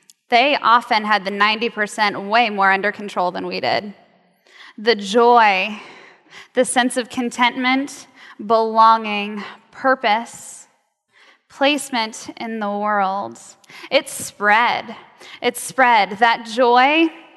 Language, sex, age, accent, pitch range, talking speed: English, female, 10-29, American, 205-250 Hz, 105 wpm